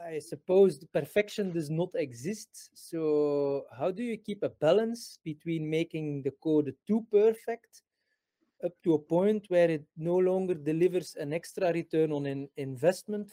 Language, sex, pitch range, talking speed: English, male, 145-185 Hz, 160 wpm